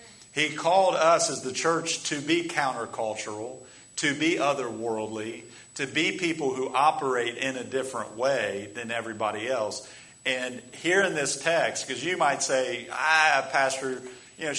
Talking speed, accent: 150 wpm, American